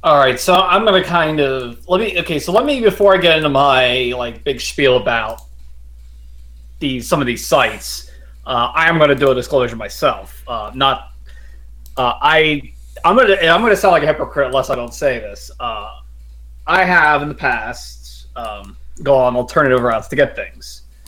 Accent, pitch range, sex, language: American, 105-140 Hz, male, English